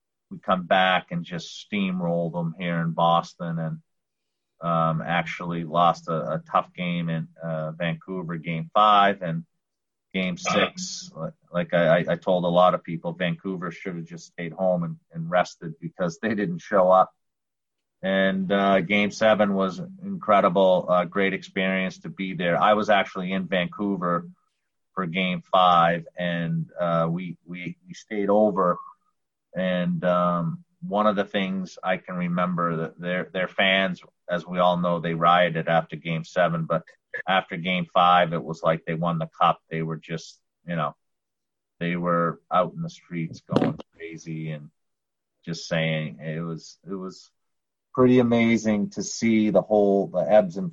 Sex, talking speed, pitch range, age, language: male, 165 wpm, 85-105 Hz, 30-49, English